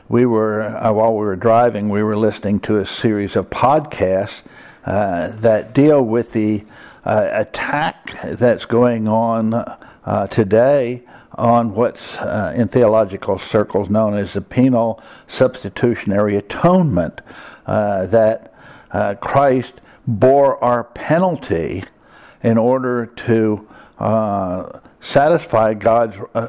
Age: 60-79